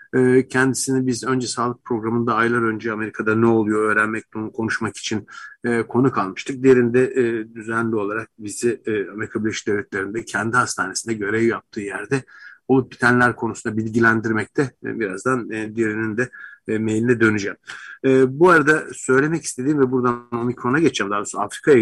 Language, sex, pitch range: Turkish, male, 115-140 Hz